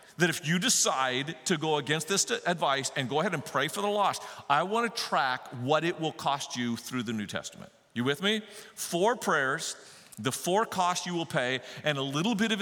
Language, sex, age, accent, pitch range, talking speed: English, male, 40-59, American, 135-200 Hz, 220 wpm